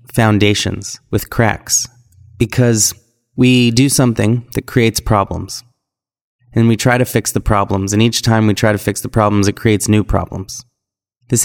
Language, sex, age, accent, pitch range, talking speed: English, male, 30-49, American, 105-120 Hz, 160 wpm